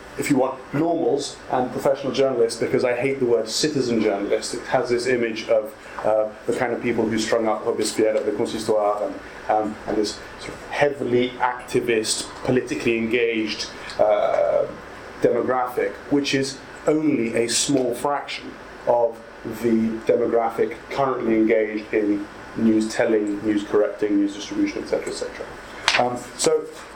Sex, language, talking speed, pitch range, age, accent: male, English, 145 wpm, 110-140 Hz, 30-49, British